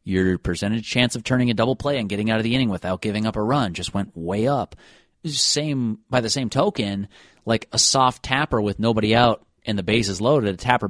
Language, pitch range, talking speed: English, 100-140 Hz, 230 wpm